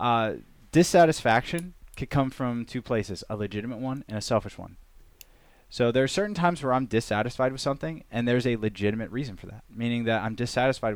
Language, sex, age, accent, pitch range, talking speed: English, male, 20-39, American, 105-130 Hz, 190 wpm